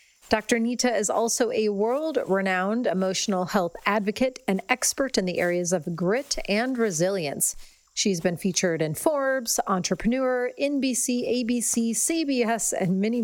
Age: 40-59